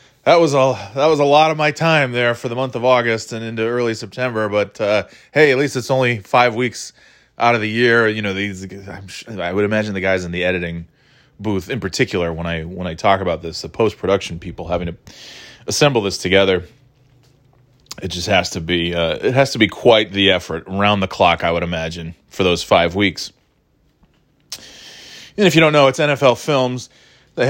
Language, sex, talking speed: English, male, 210 wpm